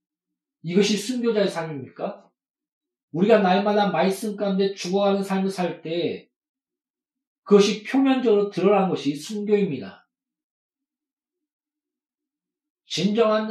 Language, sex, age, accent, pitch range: Korean, male, 40-59, native, 165-265 Hz